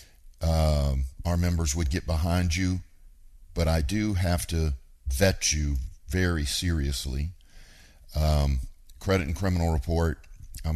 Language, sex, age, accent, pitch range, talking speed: English, male, 50-69, American, 75-90 Hz, 125 wpm